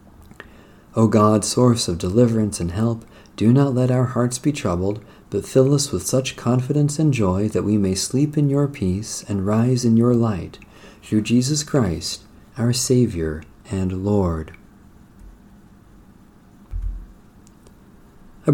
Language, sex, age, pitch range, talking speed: English, male, 40-59, 95-130 Hz, 135 wpm